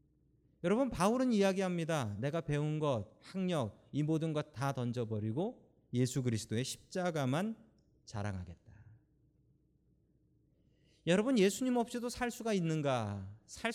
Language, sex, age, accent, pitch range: Korean, male, 40-59, native, 125-210 Hz